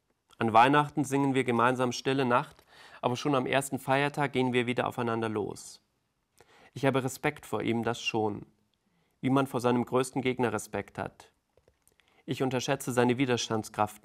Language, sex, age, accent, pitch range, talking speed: German, male, 40-59, German, 115-135 Hz, 155 wpm